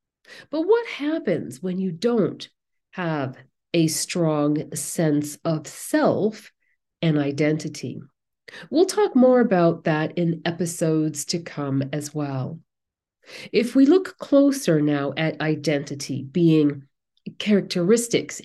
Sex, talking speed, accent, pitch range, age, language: female, 110 wpm, American, 155-220 Hz, 40-59, English